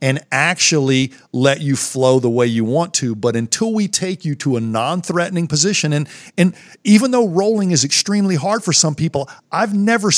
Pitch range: 135-175 Hz